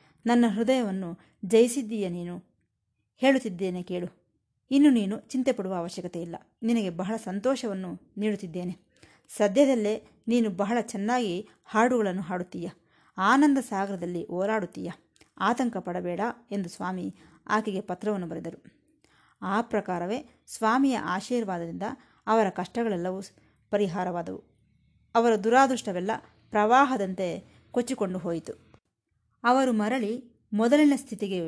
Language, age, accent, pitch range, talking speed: Kannada, 20-39, native, 180-240 Hz, 90 wpm